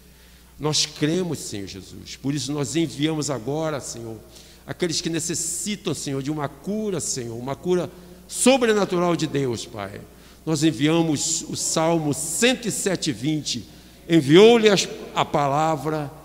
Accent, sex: Brazilian, male